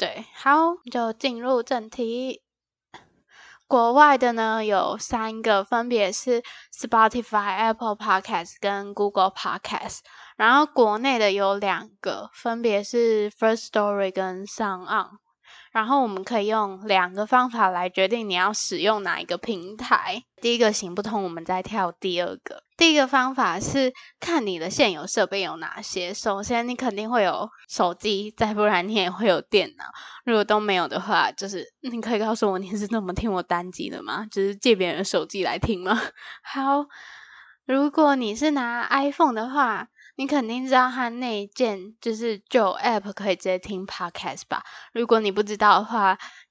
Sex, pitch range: female, 195-240 Hz